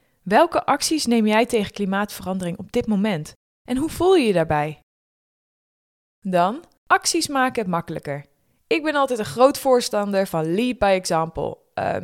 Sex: female